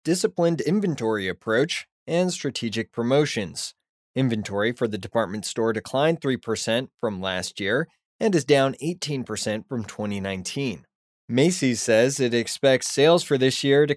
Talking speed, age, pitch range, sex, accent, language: 135 wpm, 20-39, 110-145 Hz, male, American, English